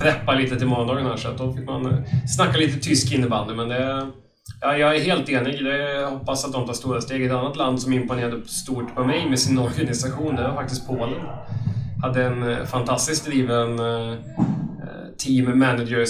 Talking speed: 170 wpm